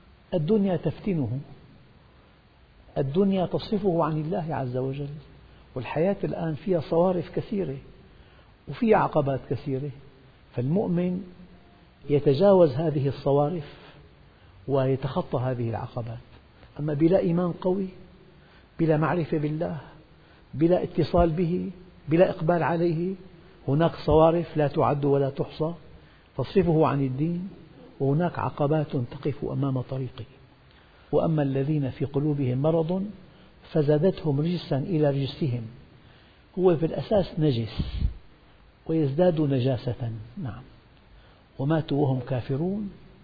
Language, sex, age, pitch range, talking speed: Arabic, male, 50-69, 135-170 Hz, 95 wpm